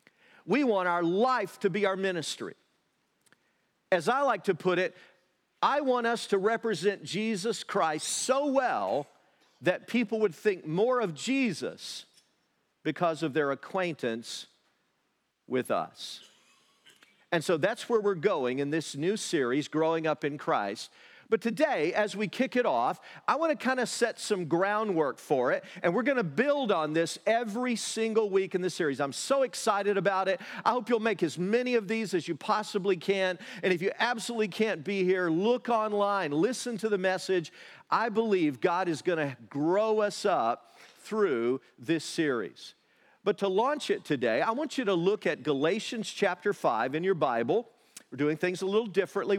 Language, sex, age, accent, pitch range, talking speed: English, male, 40-59, American, 180-230 Hz, 175 wpm